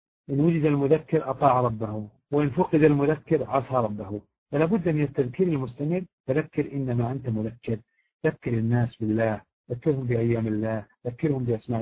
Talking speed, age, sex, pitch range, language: 130 wpm, 50-69, male, 120-165 Hz, Arabic